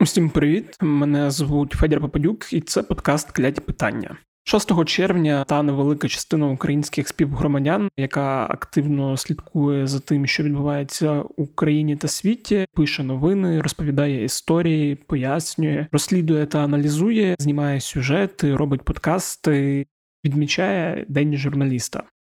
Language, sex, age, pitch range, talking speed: Ukrainian, male, 20-39, 145-165 Hz, 120 wpm